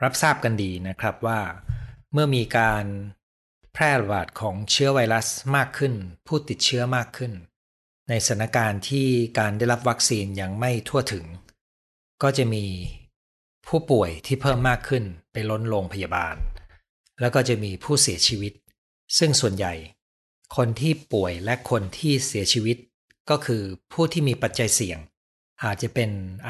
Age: 60-79